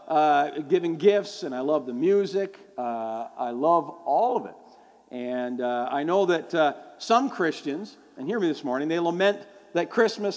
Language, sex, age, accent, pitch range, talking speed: English, male, 50-69, American, 140-190 Hz, 180 wpm